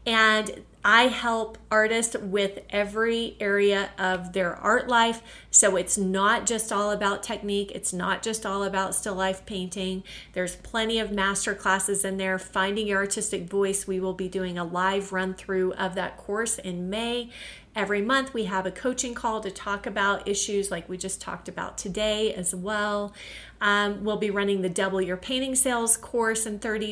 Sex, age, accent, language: female, 30-49, American, English